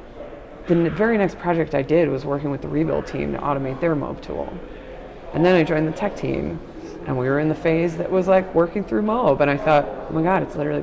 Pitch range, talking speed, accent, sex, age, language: 135-160 Hz, 245 wpm, American, female, 30-49, English